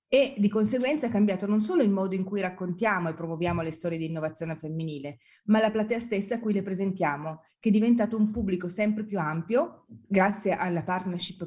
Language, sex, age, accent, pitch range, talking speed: Italian, female, 30-49, native, 175-215 Hz, 200 wpm